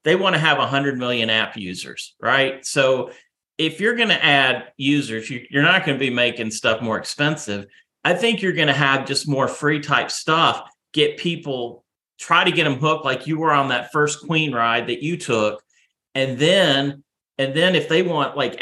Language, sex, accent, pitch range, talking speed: English, male, American, 115-150 Hz, 200 wpm